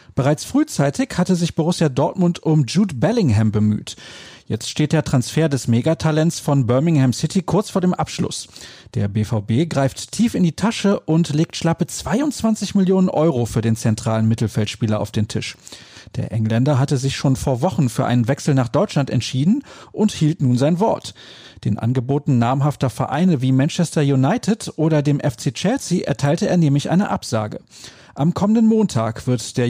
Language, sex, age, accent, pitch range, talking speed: German, male, 40-59, German, 120-170 Hz, 165 wpm